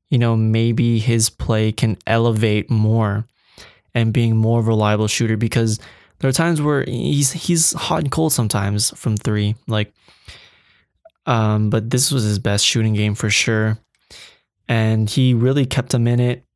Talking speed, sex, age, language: 165 wpm, male, 20-39, English